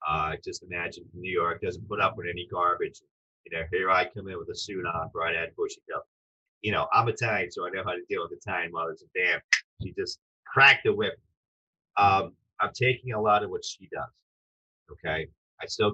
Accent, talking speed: American, 210 wpm